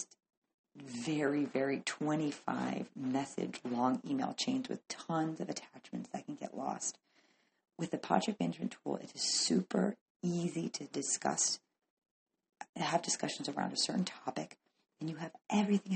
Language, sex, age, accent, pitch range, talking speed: English, female, 40-59, American, 140-205 Hz, 140 wpm